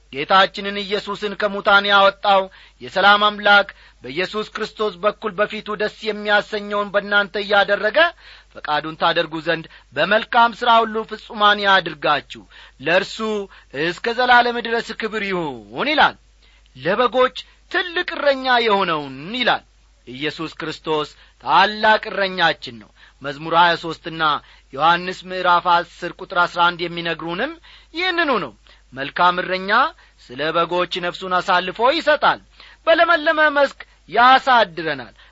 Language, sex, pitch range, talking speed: Amharic, male, 170-225 Hz, 100 wpm